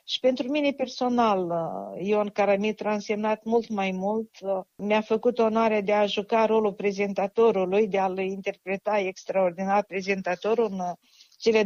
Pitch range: 190-225 Hz